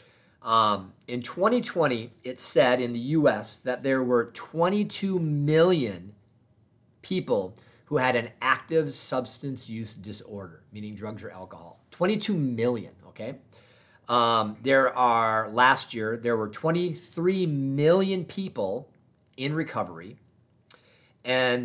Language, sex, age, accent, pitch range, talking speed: English, male, 40-59, American, 110-150 Hz, 110 wpm